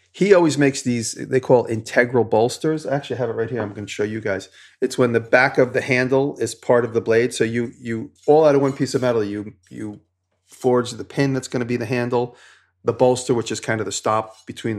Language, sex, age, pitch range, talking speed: English, male, 40-59, 110-135 Hz, 250 wpm